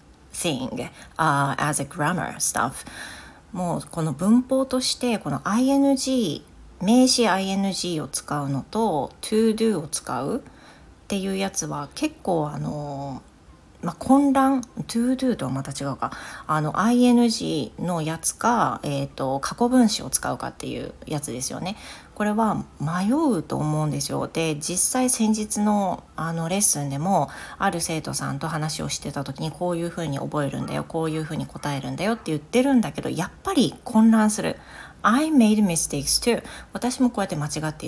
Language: Japanese